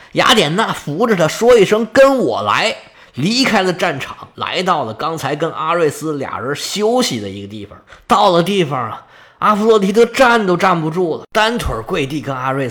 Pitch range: 150-225 Hz